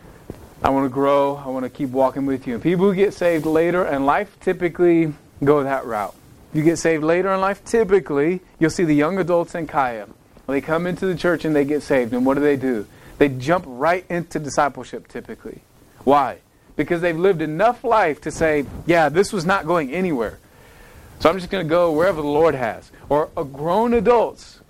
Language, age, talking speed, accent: English, 30-49, 205 wpm, American